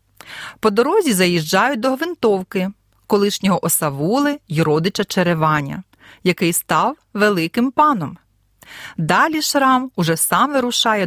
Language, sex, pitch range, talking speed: Ukrainian, female, 165-235 Hz, 105 wpm